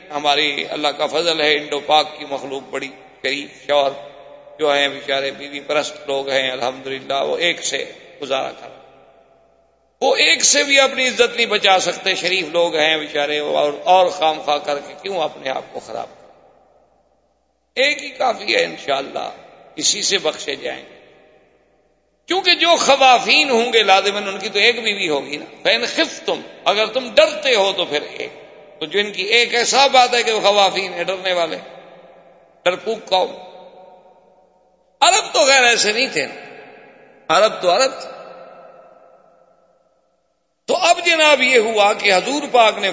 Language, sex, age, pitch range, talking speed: Urdu, male, 50-69, 145-215 Hz, 165 wpm